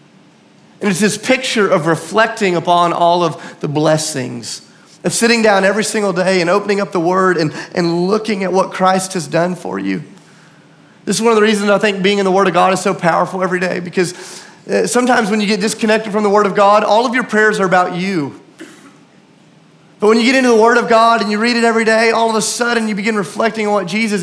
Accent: American